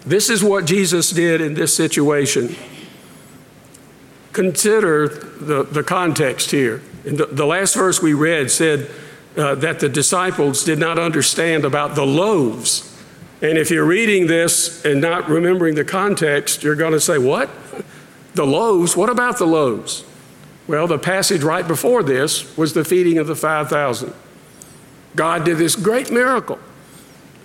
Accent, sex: American, male